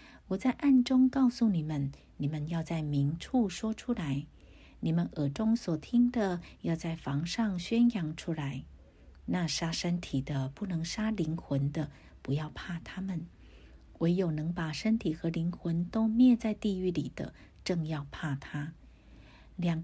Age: 50-69